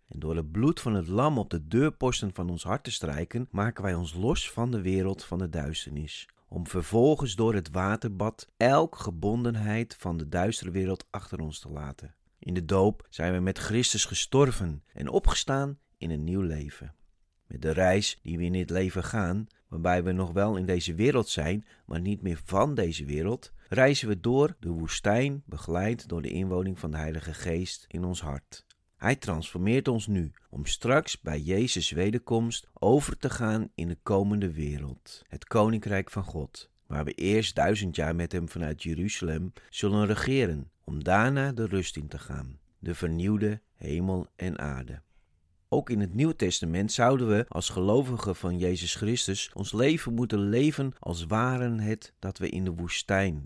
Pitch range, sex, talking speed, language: 85-110 Hz, male, 180 wpm, Dutch